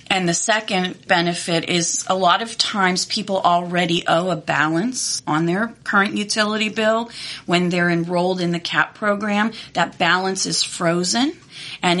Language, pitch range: English, 165-195 Hz